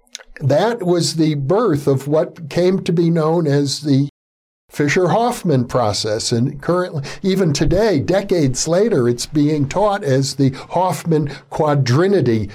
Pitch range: 130-175 Hz